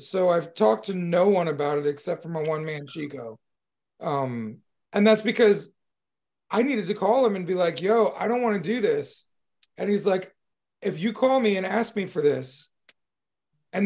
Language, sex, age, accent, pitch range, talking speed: English, male, 30-49, American, 170-225 Hz, 200 wpm